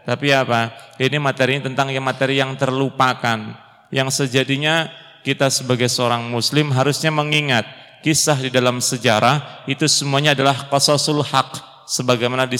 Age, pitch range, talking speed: 30-49, 125-140 Hz, 140 wpm